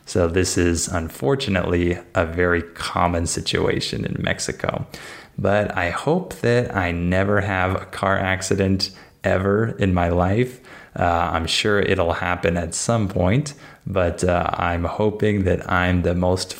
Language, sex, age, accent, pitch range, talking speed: Spanish, male, 20-39, American, 90-110 Hz, 145 wpm